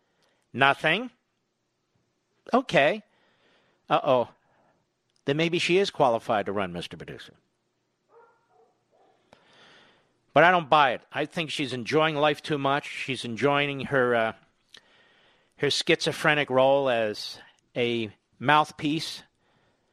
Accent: American